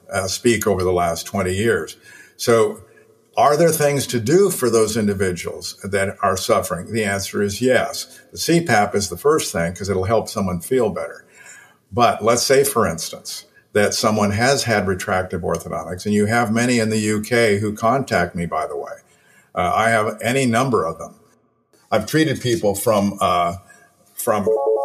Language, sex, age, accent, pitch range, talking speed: English, male, 50-69, American, 100-120 Hz, 175 wpm